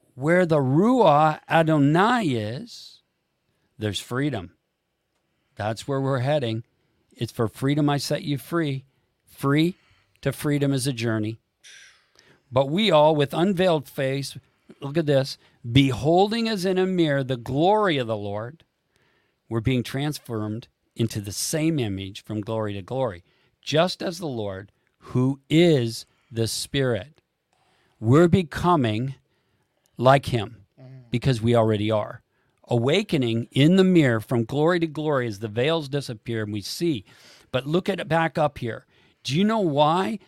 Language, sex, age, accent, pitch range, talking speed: English, male, 50-69, American, 115-165 Hz, 145 wpm